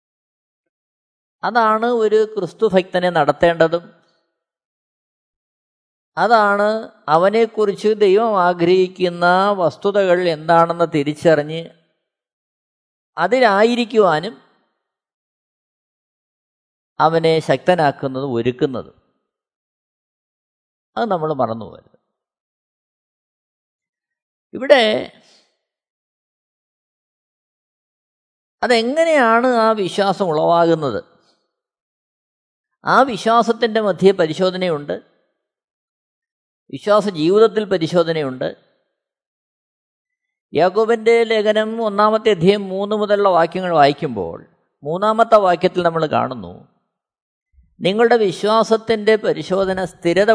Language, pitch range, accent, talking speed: Malayalam, 160-220 Hz, native, 55 wpm